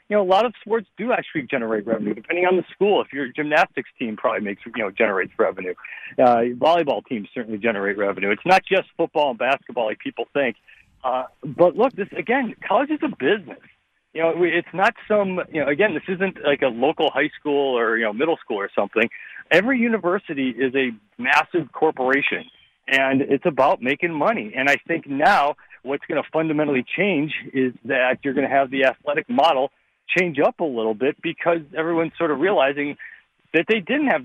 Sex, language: male, English